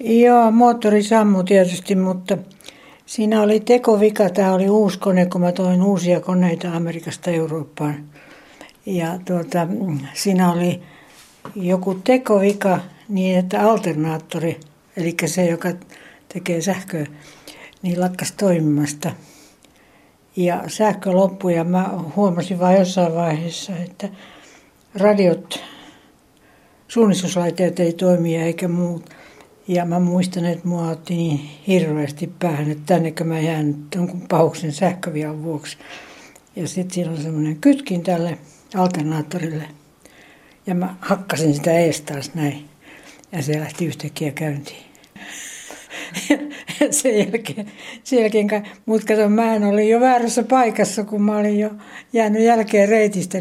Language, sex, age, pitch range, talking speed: Finnish, female, 60-79, 165-200 Hz, 120 wpm